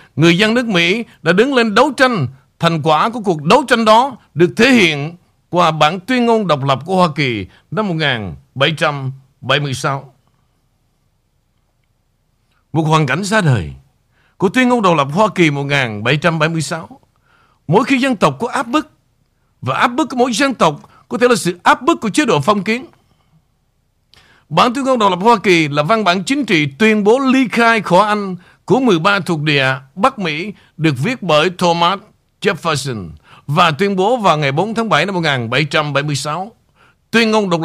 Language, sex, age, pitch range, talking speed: Vietnamese, male, 60-79, 140-215 Hz, 175 wpm